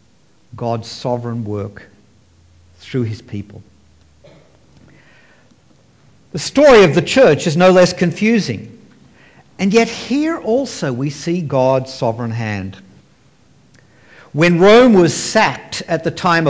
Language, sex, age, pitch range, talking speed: English, male, 60-79, 130-190 Hz, 115 wpm